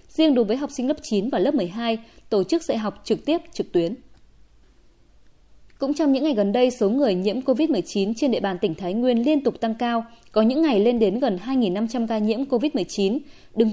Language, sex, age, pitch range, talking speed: Vietnamese, female, 20-39, 205-280 Hz, 215 wpm